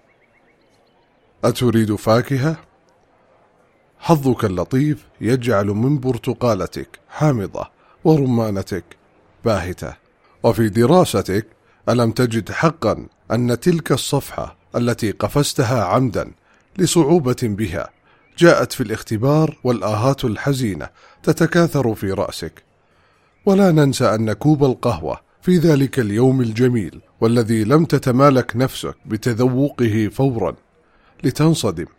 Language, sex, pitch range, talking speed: English, male, 110-145 Hz, 90 wpm